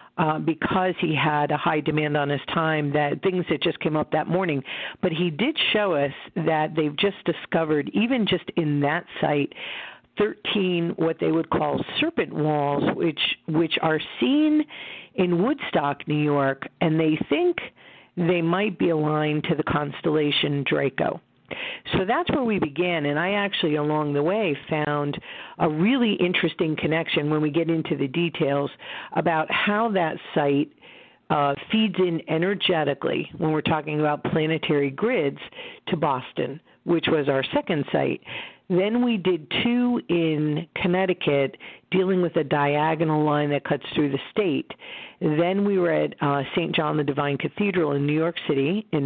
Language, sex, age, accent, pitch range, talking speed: English, female, 50-69, American, 145-180 Hz, 160 wpm